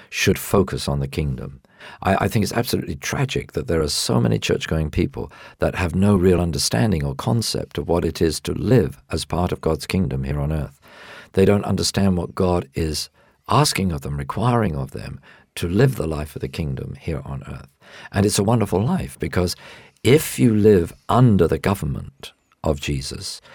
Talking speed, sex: 190 wpm, male